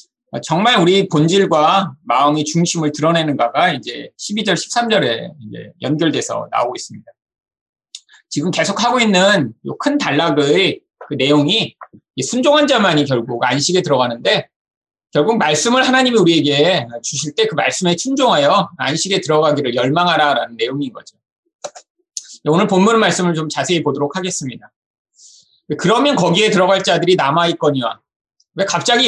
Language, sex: Korean, male